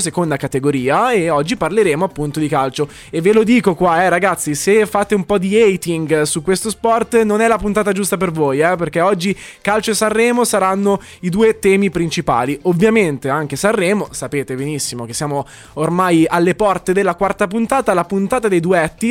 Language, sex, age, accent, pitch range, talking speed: Italian, male, 20-39, native, 155-210 Hz, 185 wpm